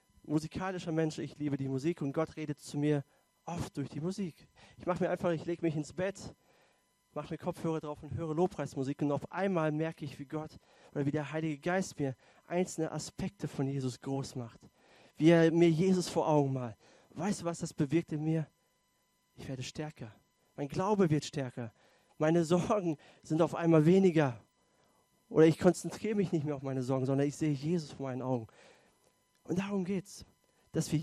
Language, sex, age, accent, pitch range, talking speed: German, male, 30-49, German, 145-180 Hz, 190 wpm